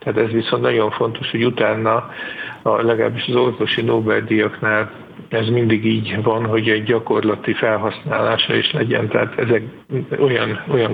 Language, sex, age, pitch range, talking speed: English, male, 50-69, 110-120 Hz, 145 wpm